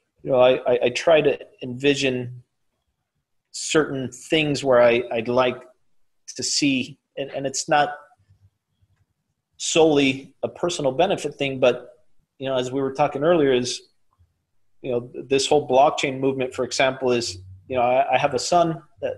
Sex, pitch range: male, 120-145 Hz